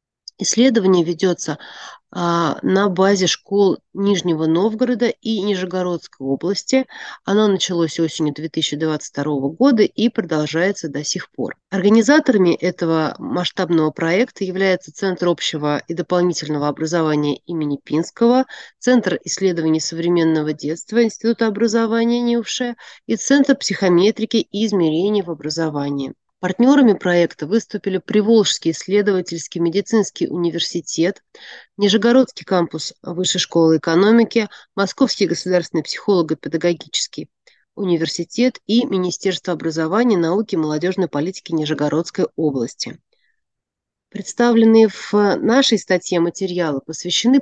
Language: Russian